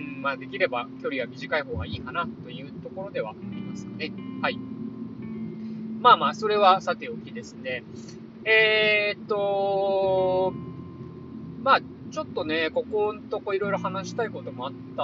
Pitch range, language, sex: 170-245 Hz, Japanese, male